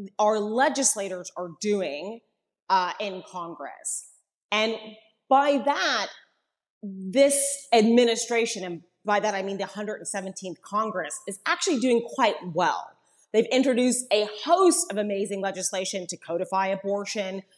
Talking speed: 120 wpm